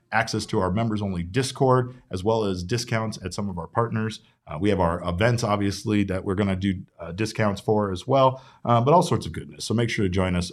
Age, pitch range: 40-59, 95-120 Hz